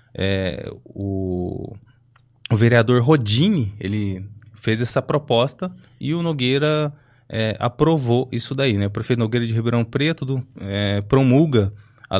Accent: Brazilian